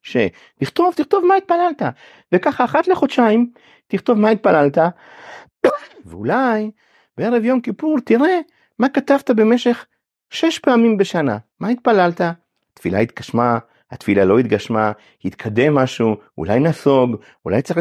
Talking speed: 120 wpm